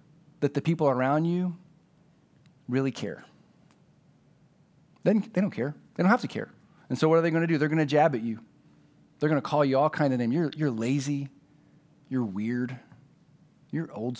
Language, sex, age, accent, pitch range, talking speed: English, male, 30-49, American, 130-160 Hz, 180 wpm